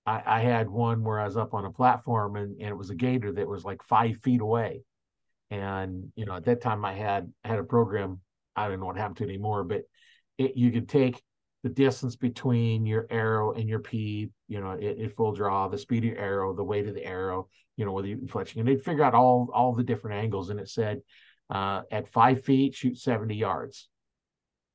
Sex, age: male, 50-69